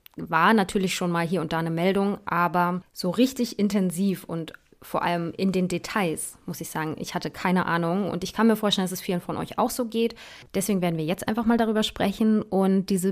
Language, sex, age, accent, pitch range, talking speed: German, female, 20-39, German, 175-215 Hz, 225 wpm